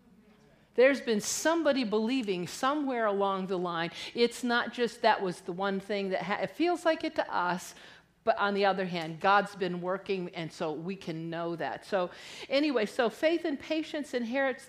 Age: 50-69